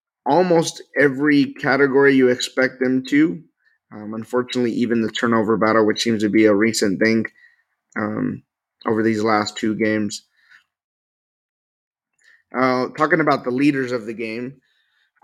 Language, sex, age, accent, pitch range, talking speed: English, male, 30-49, American, 115-130 Hz, 140 wpm